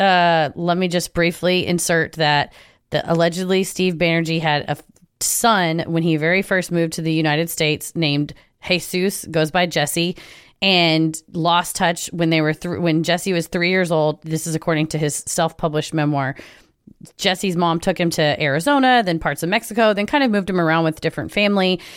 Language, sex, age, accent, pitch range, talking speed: English, female, 30-49, American, 160-190 Hz, 180 wpm